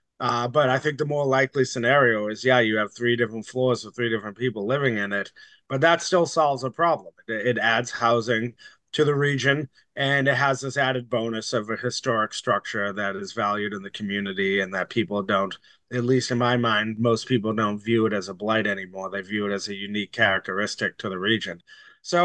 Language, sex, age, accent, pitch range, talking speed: English, male, 30-49, American, 110-135 Hz, 215 wpm